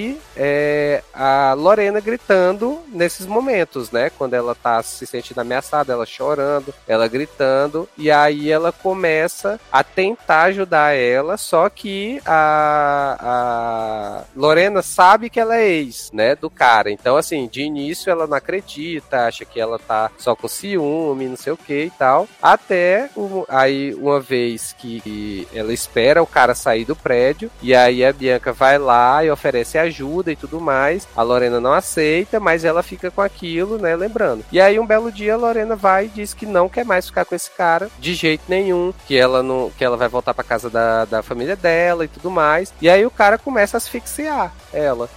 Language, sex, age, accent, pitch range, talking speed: Portuguese, male, 20-39, Brazilian, 130-185 Hz, 180 wpm